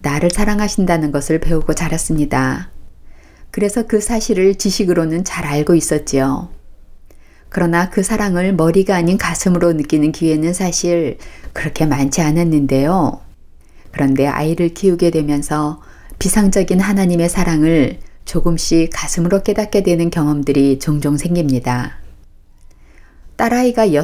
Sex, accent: female, native